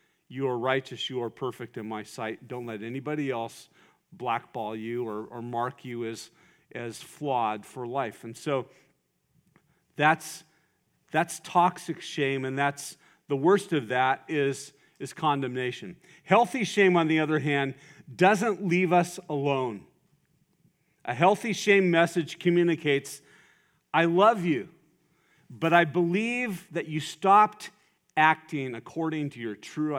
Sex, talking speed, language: male, 135 wpm, English